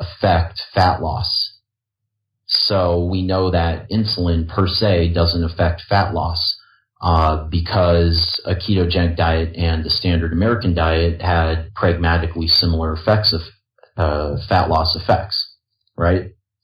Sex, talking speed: male, 125 wpm